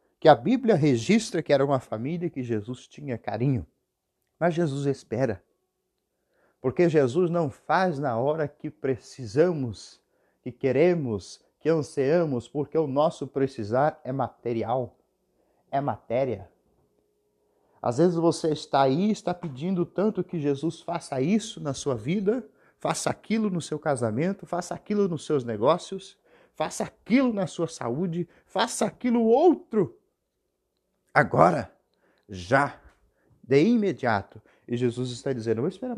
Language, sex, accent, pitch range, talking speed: Portuguese, male, Brazilian, 125-190 Hz, 135 wpm